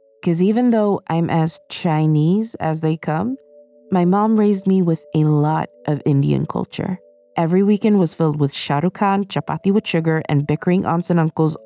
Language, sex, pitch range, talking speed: English, female, 140-185 Hz, 175 wpm